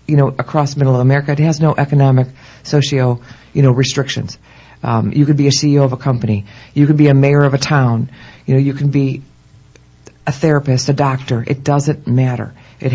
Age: 50-69